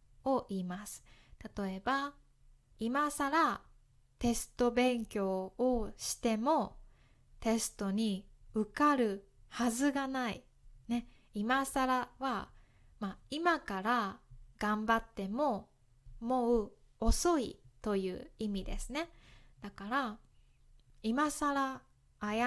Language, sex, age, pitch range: Japanese, female, 20-39, 190-260 Hz